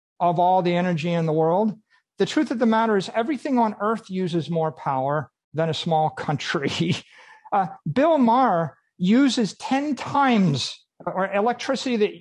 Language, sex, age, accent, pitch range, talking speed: English, male, 50-69, American, 175-225 Hz, 155 wpm